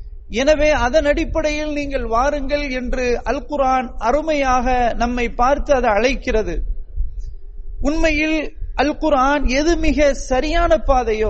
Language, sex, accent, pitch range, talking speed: English, male, Indian, 225-295 Hz, 115 wpm